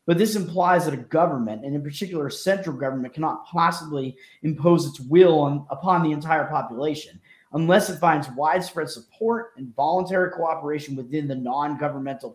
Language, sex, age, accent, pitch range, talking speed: English, male, 30-49, American, 140-180 Hz, 160 wpm